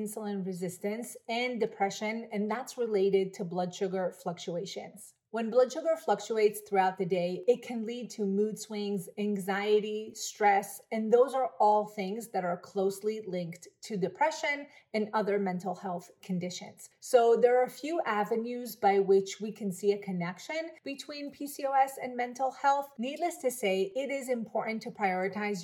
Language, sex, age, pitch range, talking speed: English, female, 30-49, 195-245 Hz, 160 wpm